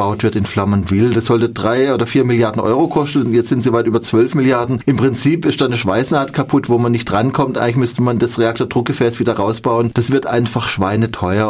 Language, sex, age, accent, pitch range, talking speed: German, male, 30-49, German, 115-135 Hz, 220 wpm